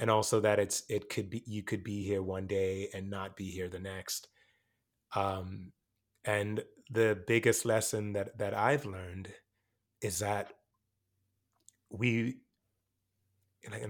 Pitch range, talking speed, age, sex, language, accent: 100-110 Hz, 140 wpm, 30-49, male, English, American